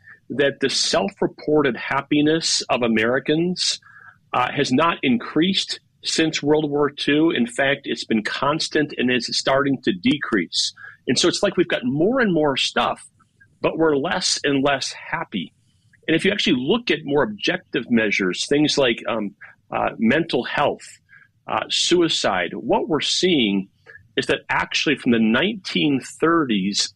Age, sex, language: 40-59, male, English